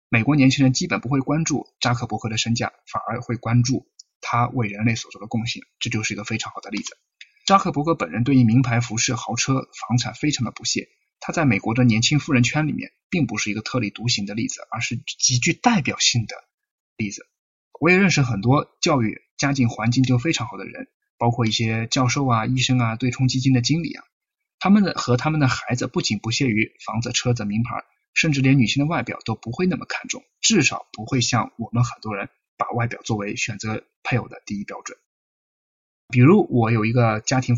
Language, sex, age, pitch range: Chinese, male, 20-39, 115-140 Hz